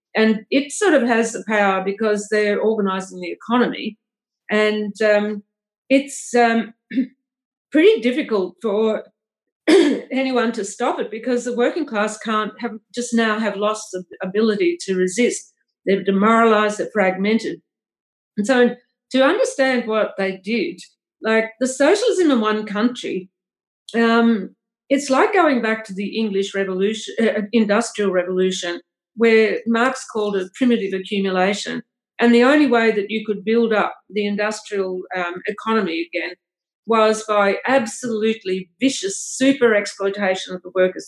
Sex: female